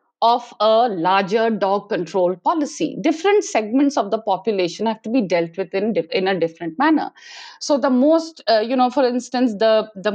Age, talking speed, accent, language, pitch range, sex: 50-69, 185 wpm, Indian, English, 210-305 Hz, female